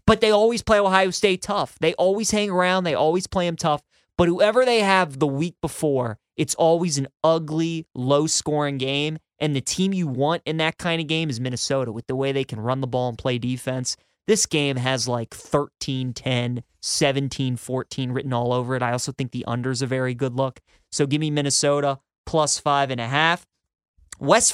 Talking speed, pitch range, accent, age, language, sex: 200 wpm, 135-170 Hz, American, 20-39, English, male